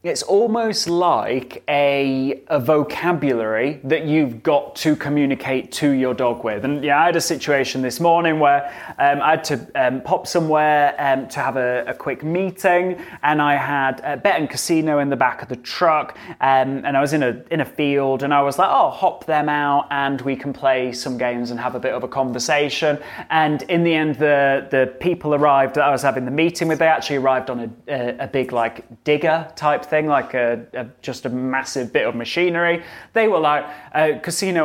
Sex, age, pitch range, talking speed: male, 20-39, 140-175 Hz, 210 wpm